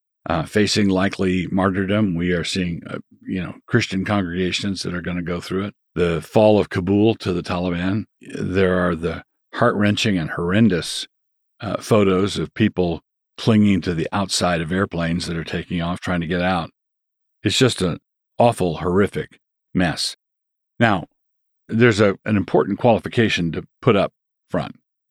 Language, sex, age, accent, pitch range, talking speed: English, male, 50-69, American, 90-110 Hz, 160 wpm